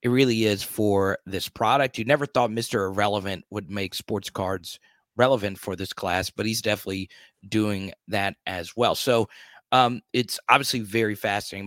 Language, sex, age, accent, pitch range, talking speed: English, male, 30-49, American, 100-120 Hz, 165 wpm